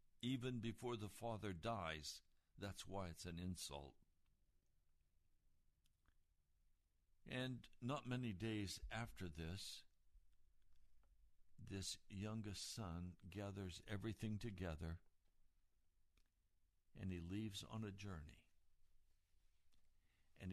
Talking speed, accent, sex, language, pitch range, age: 85 wpm, American, male, English, 80-105 Hz, 60-79